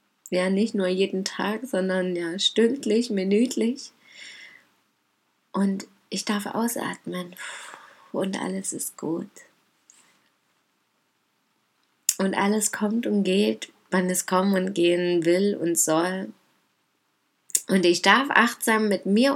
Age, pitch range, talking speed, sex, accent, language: 20-39, 170-200 Hz, 110 wpm, female, German, German